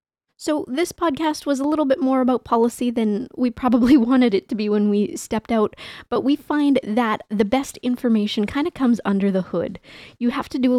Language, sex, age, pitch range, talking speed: English, female, 20-39, 205-250 Hz, 215 wpm